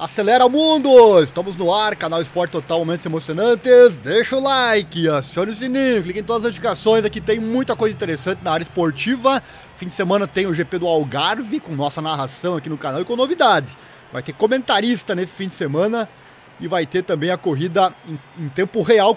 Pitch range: 155-220 Hz